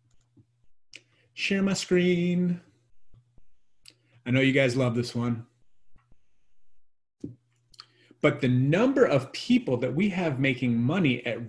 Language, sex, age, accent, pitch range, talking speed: English, male, 30-49, American, 110-150 Hz, 110 wpm